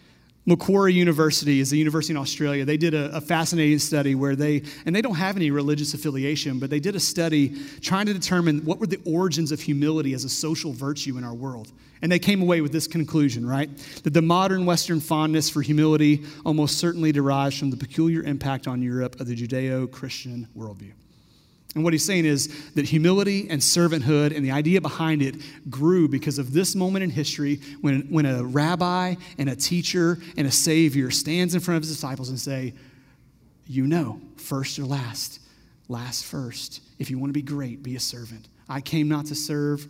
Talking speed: 195 wpm